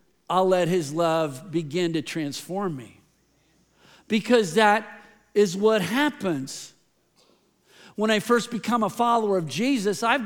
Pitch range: 180-235 Hz